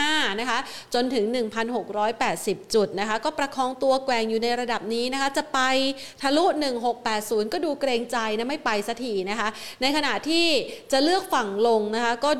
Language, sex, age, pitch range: Thai, female, 30-49, 205-255 Hz